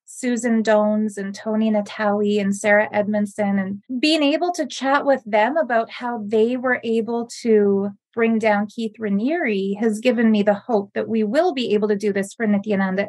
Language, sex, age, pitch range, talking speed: English, female, 20-39, 210-245 Hz, 185 wpm